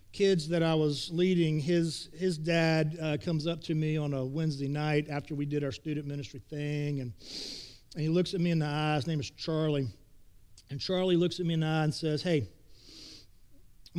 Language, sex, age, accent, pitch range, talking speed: English, male, 40-59, American, 130-175 Hz, 210 wpm